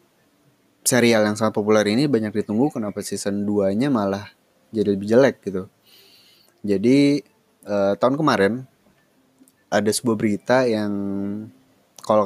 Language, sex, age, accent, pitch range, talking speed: Indonesian, male, 20-39, native, 100-115 Hz, 115 wpm